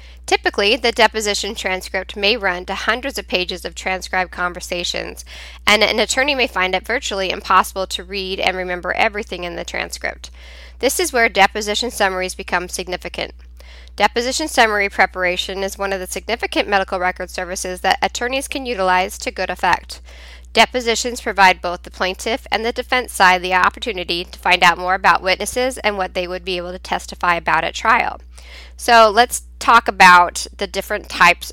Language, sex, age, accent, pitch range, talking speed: English, female, 10-29, American, 175-210 Hz, 170 wpm